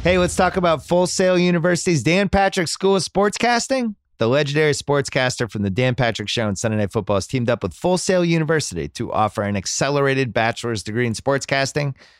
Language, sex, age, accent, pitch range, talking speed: English, male, 30-49, American, 90-125 Hz, 200 wpm